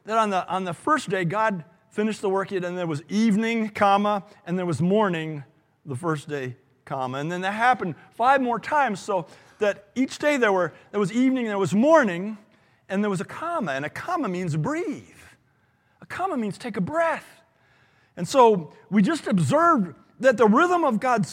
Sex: male